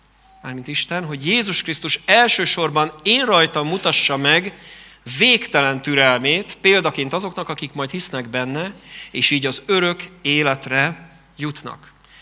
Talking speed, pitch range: 120 wpm, 145-180 Hz